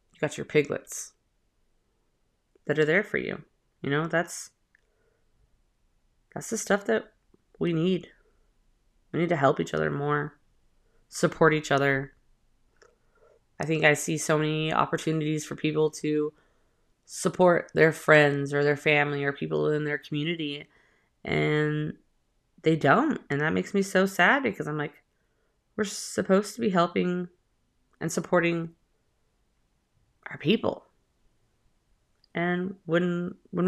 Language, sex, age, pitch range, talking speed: English, female, 20-39, 145-175 Hz, 125 wpm